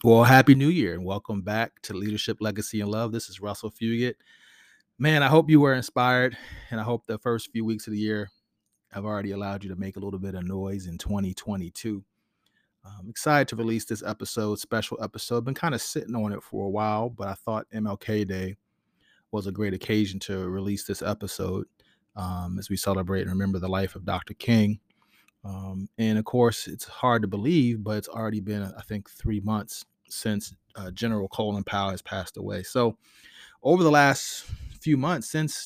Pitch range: 95-115 Hz